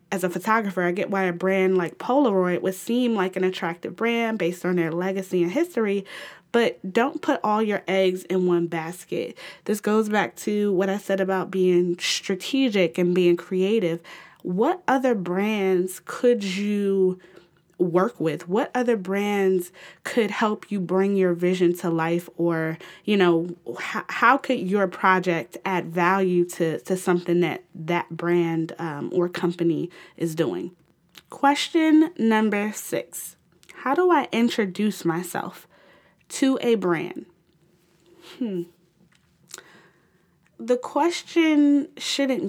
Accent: American